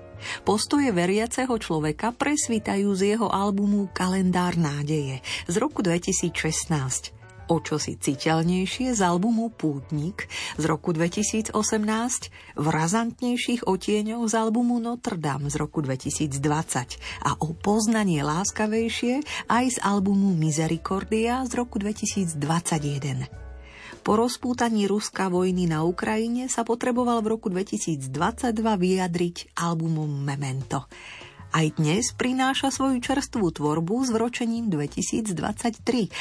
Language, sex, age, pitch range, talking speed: Slovak, female, 40-59, 155-225 Hz, 110 wpm